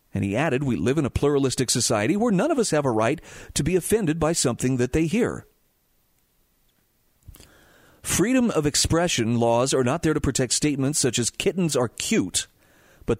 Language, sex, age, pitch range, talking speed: English, male, 40-59, 120-165 Hz, 180 wpm